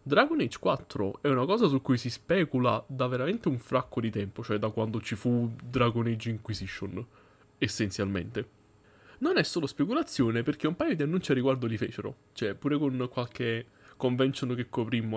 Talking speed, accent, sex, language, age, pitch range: 180 wpm, native, male, Italian, 20-39, 105-135 Hz